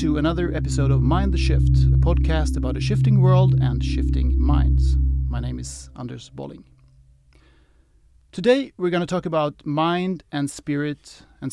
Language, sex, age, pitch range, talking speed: English, male, 30-49, 125-155 Hz, 160 wpm